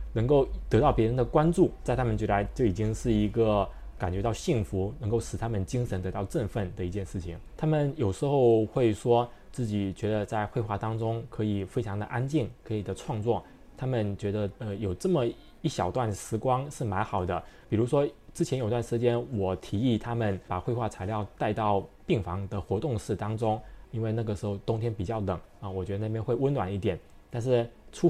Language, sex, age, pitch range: Chinese, male, 20-39, 100-120 Hz